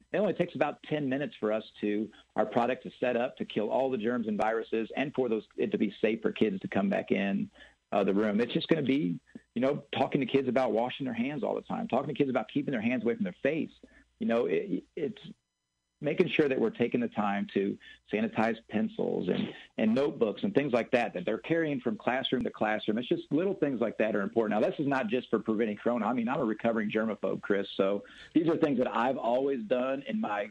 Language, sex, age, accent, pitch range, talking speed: English, male, 50-69, American, 110-165 Hz, 250 wpm